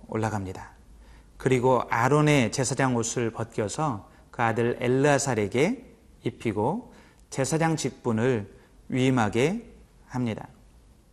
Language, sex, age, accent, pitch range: Korean, male, 30-49, native, 110-140 Hz